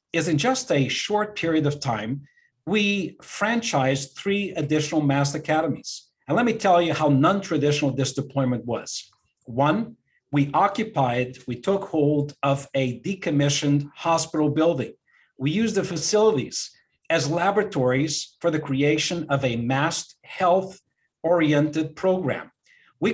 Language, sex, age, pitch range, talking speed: English, male, 50-69, 140-180 Hz, 130 wpm